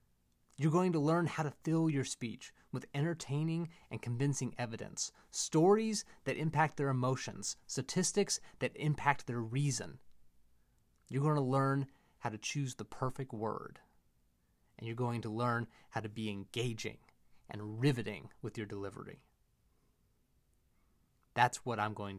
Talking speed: 140 wpm